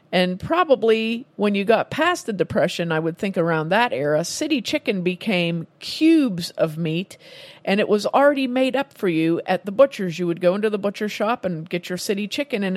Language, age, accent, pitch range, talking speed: English, 50-69, American, 185-245 Hz, 205 wpm